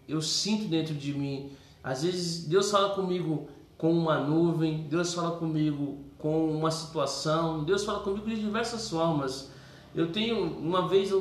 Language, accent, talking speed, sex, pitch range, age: Portuguese, Brazilian, 155 wpm, male, 160-215 Hz, 20-39